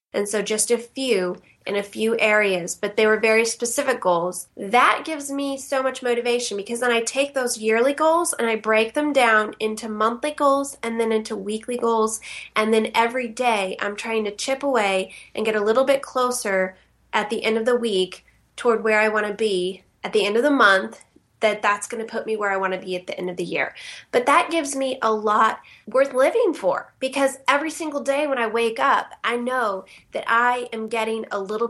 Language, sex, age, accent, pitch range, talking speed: English, female, 20-39, American, 215-260 Hz, 220 wpm